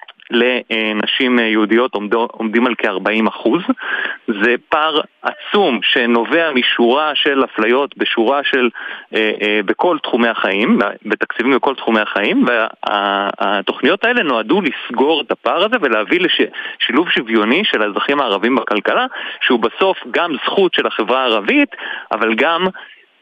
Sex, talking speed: male, 115 wpm